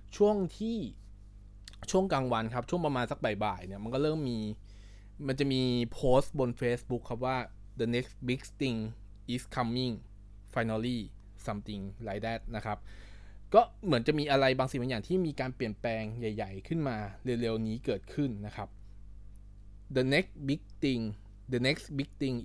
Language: Thai